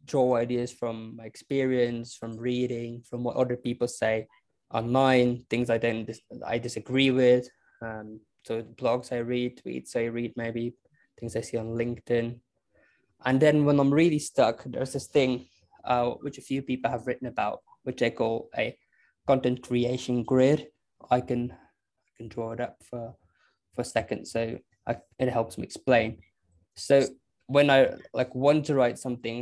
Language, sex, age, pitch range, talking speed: English, male, 20-39, 115-135 Hz, 170 wpm